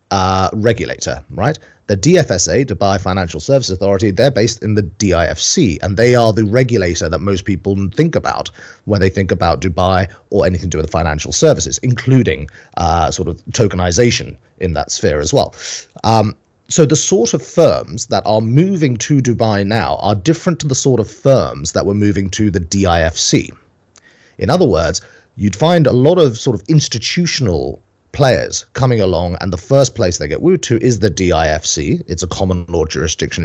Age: 30-49